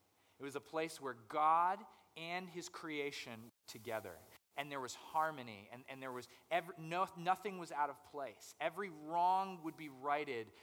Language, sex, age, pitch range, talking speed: English, male, 30-49, 125-155 Hz, 175 wpm